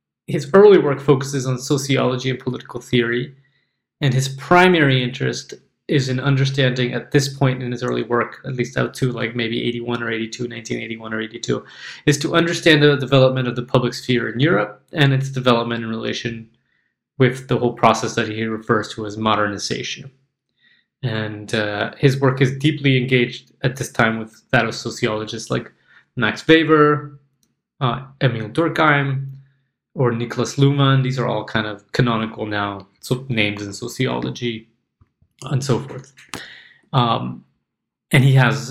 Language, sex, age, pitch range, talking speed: English, male, 20-39, 120-140 Hz, 160 wpm